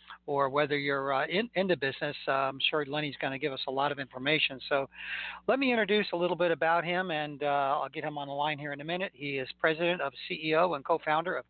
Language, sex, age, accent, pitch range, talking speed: English, male, 40-59, American, 140-165 Hz, 250 wpm